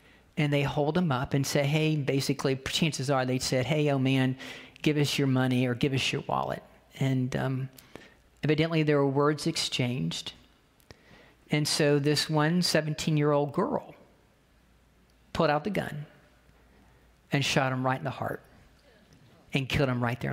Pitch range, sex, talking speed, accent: 135-160 Hz, male, 165 wpm, American